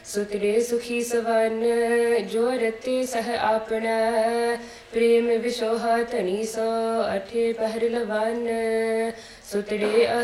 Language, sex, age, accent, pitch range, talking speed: English, female, 20-39, Indian, 220-235 Hz, 90 wpm